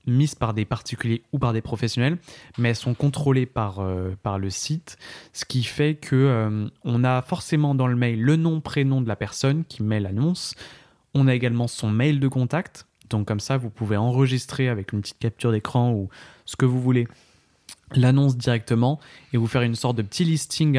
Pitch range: 110-135 Hz